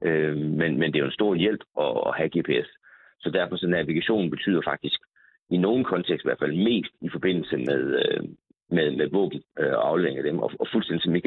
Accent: native